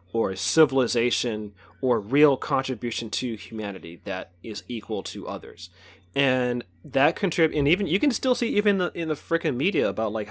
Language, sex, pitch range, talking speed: English, male, 100-135 Hz, 170 wpm